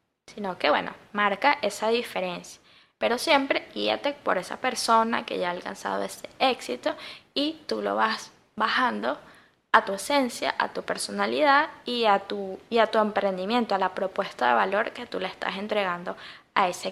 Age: 10-29